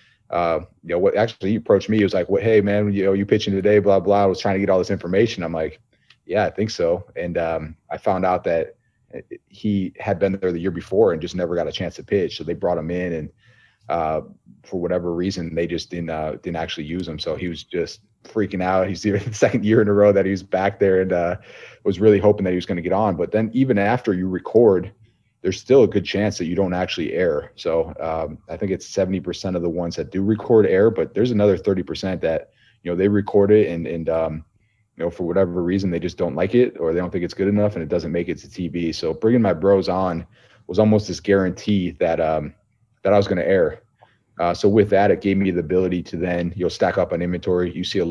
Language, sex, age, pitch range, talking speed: English, male, 30-49, 90-105 Hz, 260 wpm